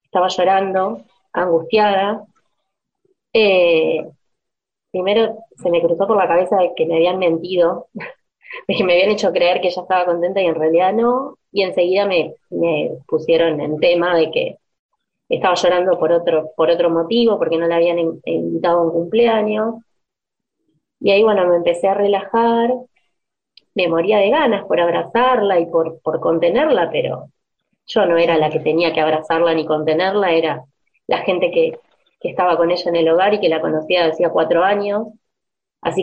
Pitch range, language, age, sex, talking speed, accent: 170-225 Hz, Spanish, 20-39, female, 170 wpm, Argentinian